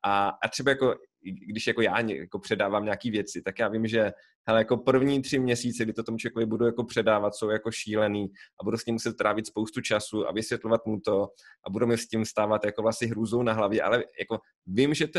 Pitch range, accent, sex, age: 105-120 Hz, native, male, 20-39